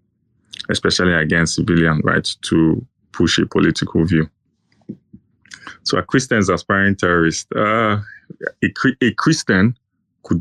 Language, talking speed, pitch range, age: English, 110 wpm, 85-100 Hz, 20-39